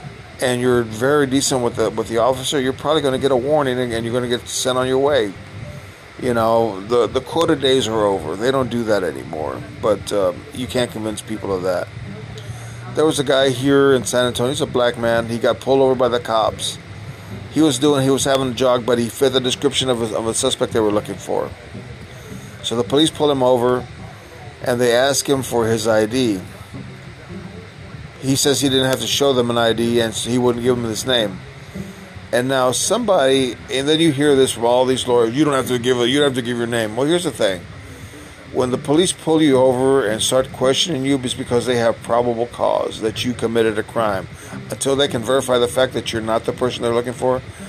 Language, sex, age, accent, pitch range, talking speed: English, male, 40-59, American, 115-135 Hz, 230 wpm